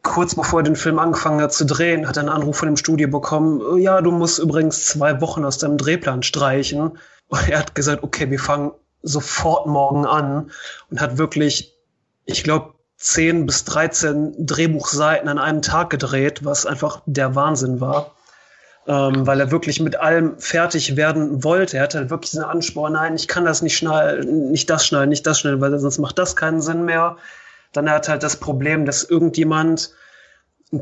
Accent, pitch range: German, 145-160 Hz